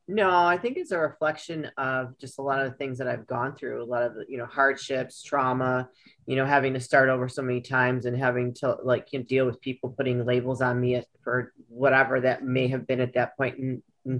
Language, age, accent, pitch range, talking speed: English, 30-49, American, 130-145 Hz, 245 wpm